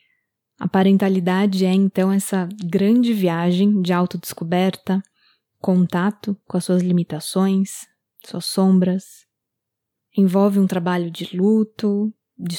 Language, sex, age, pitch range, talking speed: Portuguese, female, 20-39, 180-215 Hz, 105 wpm